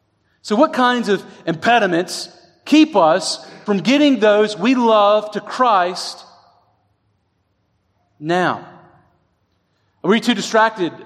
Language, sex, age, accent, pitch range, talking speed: English, male, 40-59, American, 195-245 Hz, 105 wpm